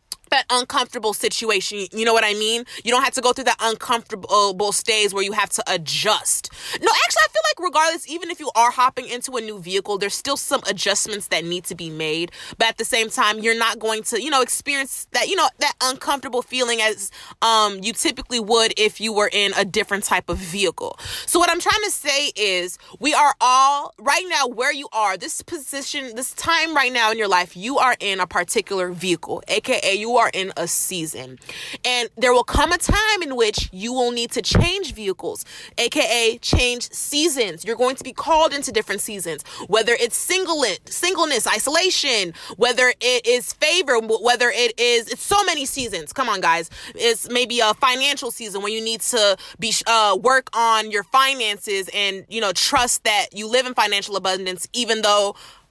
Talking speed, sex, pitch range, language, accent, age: 200 wpm, female, 205-275 Hz, English, American, 20-39